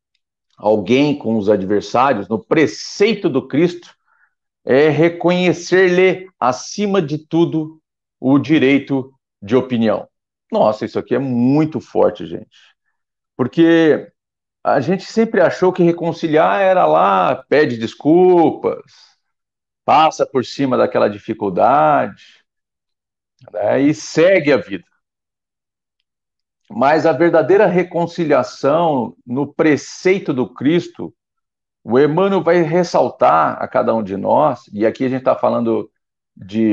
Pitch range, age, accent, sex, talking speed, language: 120-175 Hz, 50-69, Brazilian, male, 115 wpm, Portuguese